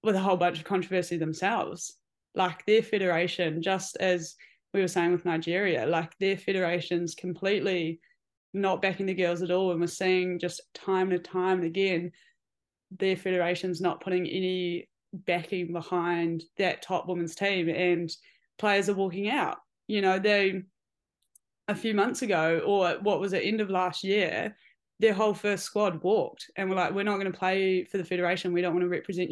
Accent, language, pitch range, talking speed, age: Australian, English, 175-200 Hz, 180 wpm, 20-39